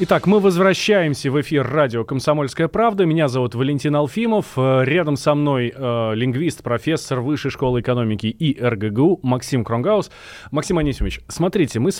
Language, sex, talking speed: Russian, male, 145 wpm